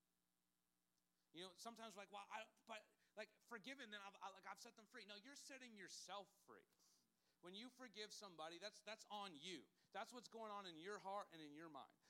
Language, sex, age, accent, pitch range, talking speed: English, male, 40-59, American, 165-230 Hz, 200 wpm